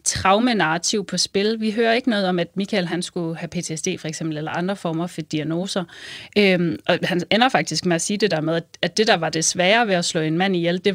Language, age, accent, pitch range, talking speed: Danish, 30-49, native, 170-205 Hz, 245 wpm